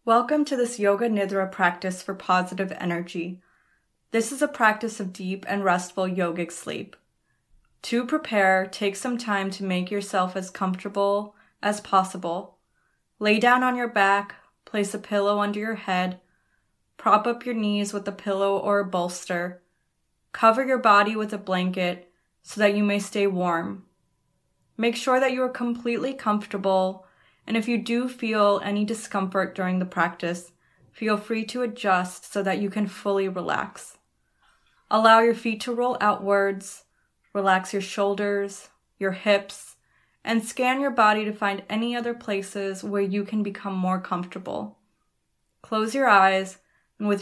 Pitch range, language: 190-220 Hz, English